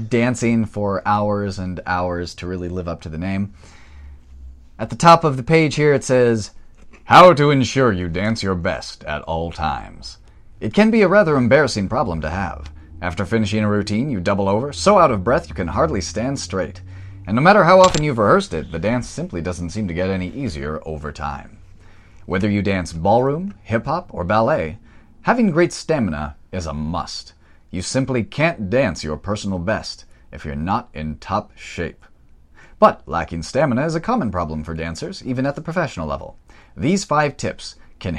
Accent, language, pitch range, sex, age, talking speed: American, English, 85-125 Hz, male, 30-49, 185 wpm